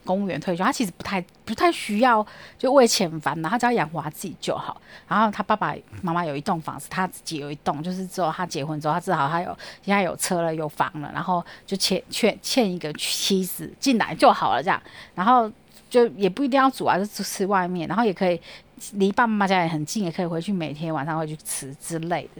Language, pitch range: Chinese, 175-245 Hz